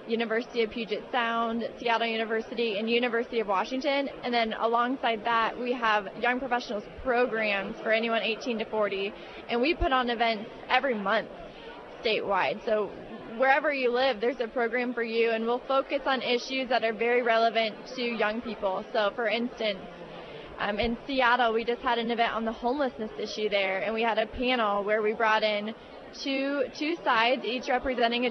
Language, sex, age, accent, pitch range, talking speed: English, female, 20-39, American, 225-260 Hz, 180 wpm